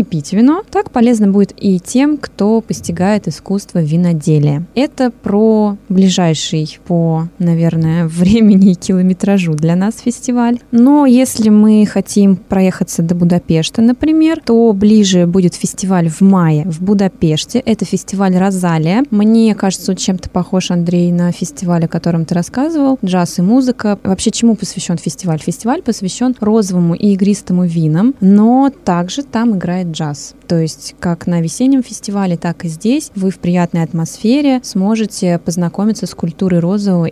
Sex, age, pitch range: female, 20-39, 170-220 Hz